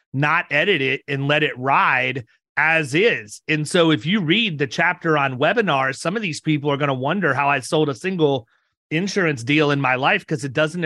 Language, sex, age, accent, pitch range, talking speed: English, male, 30-49, American, 150-185 Hz, 215 wpm